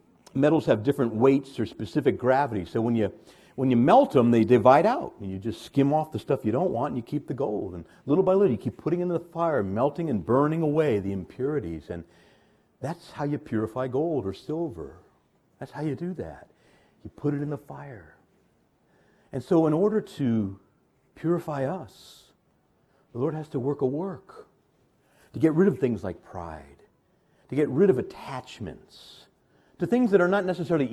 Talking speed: 195 wpm